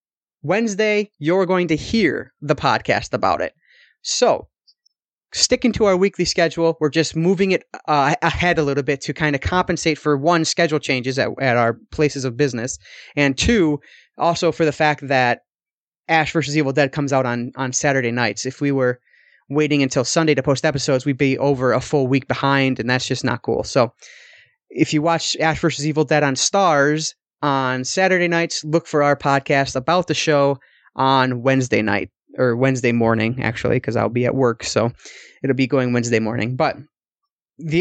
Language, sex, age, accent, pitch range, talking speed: English, male, 30-49, American, 130-165 Hz, 185 wpm